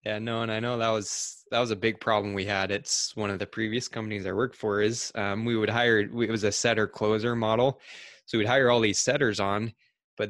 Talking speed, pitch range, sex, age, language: 245 wpm, 100-115 Hz, male, 20-39, English